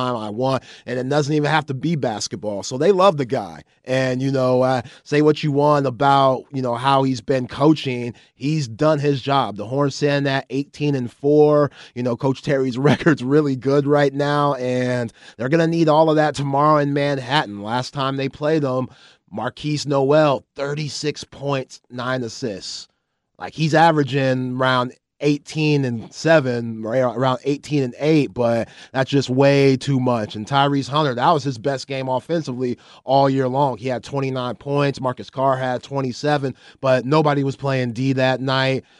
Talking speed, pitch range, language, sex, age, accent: 180 wpm, 125-140 Hz, English, male, 30-49, American